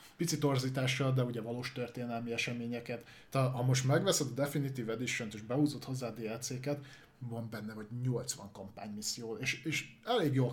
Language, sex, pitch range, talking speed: Hungarian, male, 115-135 Hz, 160 wpm